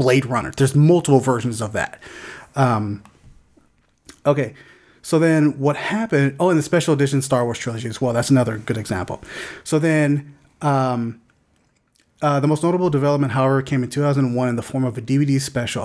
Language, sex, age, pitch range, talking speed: English, male, 30-49, 120-150 Hz, 175 wpm